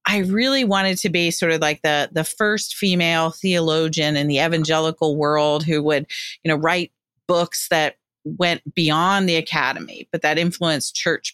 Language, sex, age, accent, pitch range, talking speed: English, female, 40-59, American, 155-195 Hz, 170 wpm